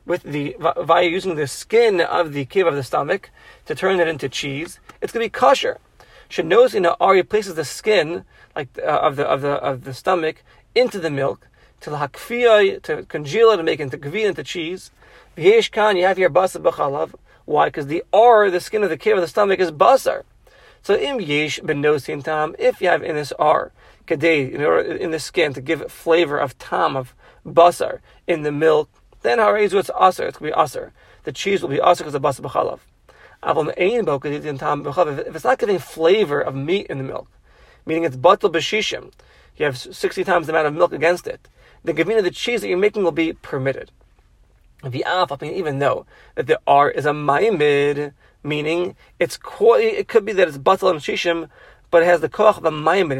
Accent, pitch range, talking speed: American, 150-240 Hz, 205 wpm